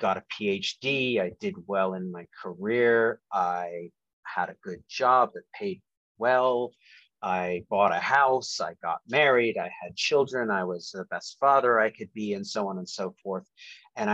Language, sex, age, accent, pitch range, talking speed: English, male, 30-49, American, 95-125 Hz, 180 wpm